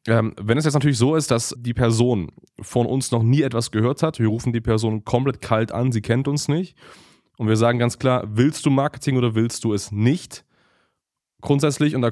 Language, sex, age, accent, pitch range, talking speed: German, male, 20-39, German, 115-135 Hz, 215 wpm